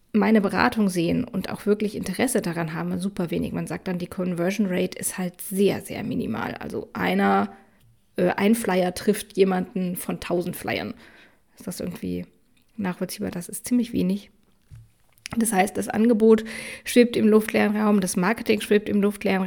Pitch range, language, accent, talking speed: 185-225 Hz, German, German, 160 wpm